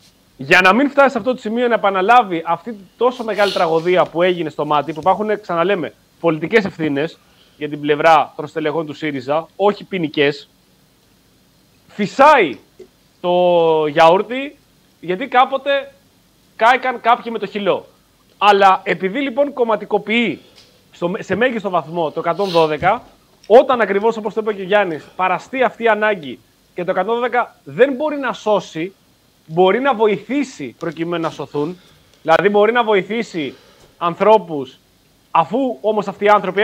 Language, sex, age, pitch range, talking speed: Greek, male, 30-49, 170-230 Hz, 140 wpm